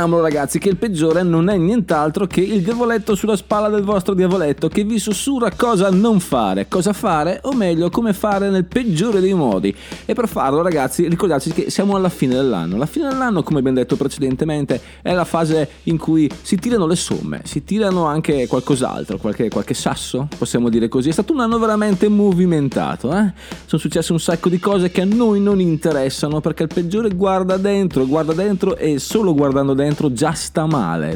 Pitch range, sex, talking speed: 130-190 Hz, male, 190 wpm